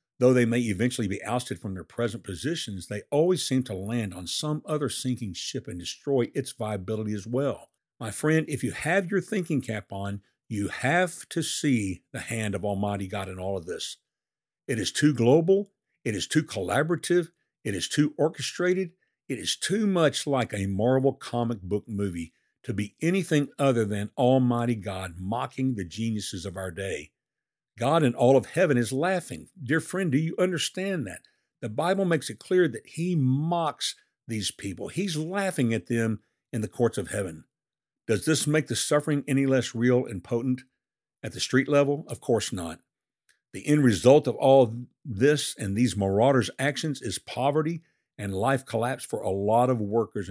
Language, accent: English, American